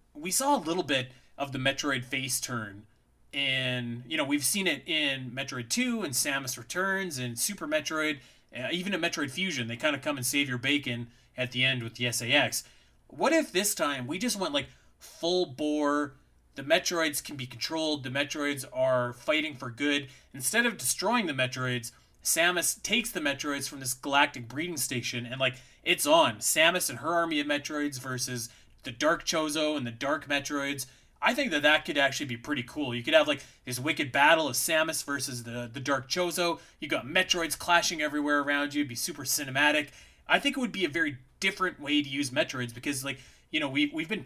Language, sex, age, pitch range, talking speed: English, male, 30-49, 130-165 Hz, 205 wpm